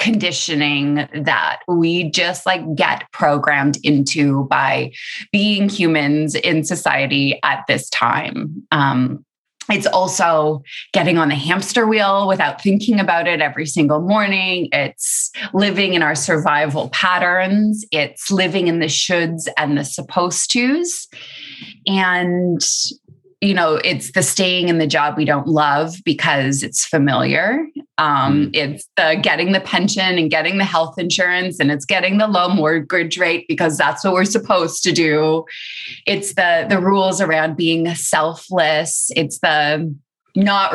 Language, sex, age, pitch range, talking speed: English, female, 20-39, 150-195 Hz, 140 wpm